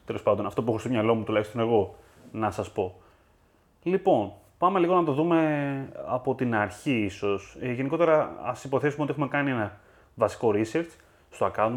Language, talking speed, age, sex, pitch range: Greek, 175 wpm, 30-49, male, 100-135 Hz